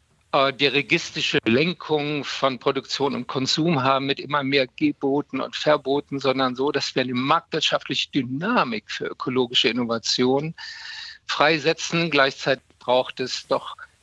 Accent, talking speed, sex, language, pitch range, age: German, 125 wpm, male, German, 125-150 Hz, 50-69